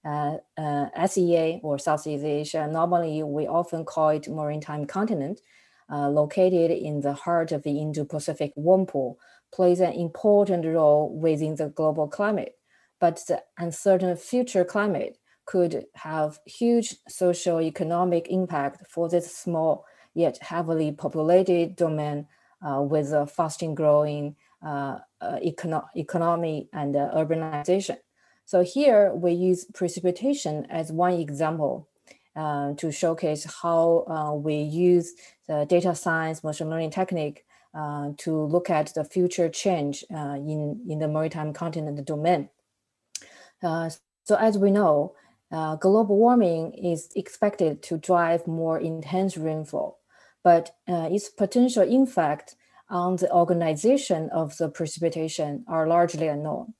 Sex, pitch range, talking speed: female, 150-180 Hz, 135 wpm